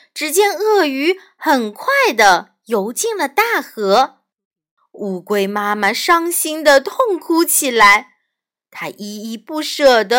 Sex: female